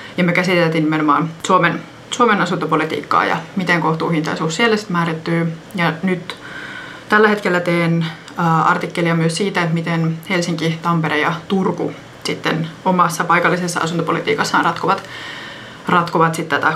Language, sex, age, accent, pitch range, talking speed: Finnish, female, 20-39, native, 160-185 Hz, 115 wpm